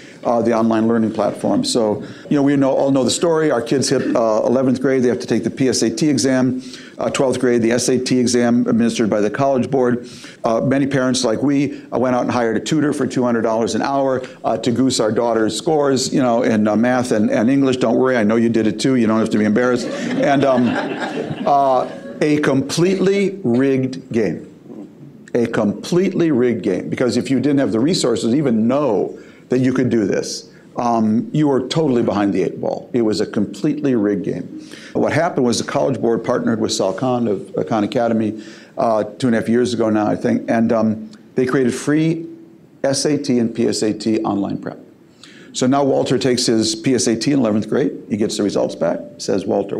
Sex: male